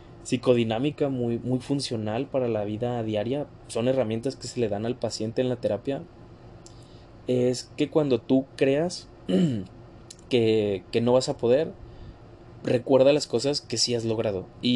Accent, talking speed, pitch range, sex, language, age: Mexican, 155 wpm, 115-130 Hz, male, Spanish, 20-39